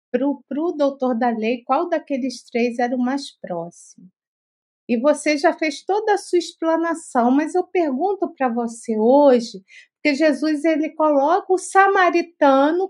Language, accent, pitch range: Portuguese, Brazilian, 235-335 Hz